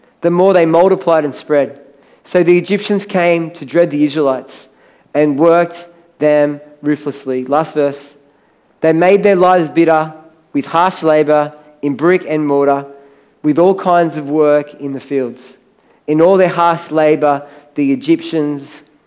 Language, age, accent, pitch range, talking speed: English, 40-59, Australian, 145-175 Hz, 150 wpm